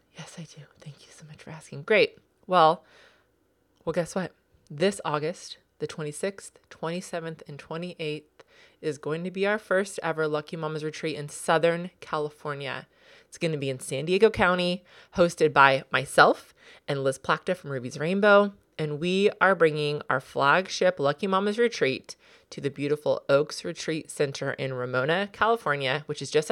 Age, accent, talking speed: 30-49, American, 165 wpm